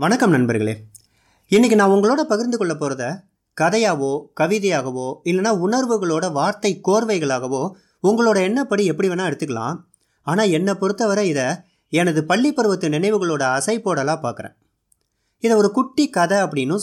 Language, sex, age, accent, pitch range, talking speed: Tamil, male, 30-49, native, 135-205 Hz, 120 wpm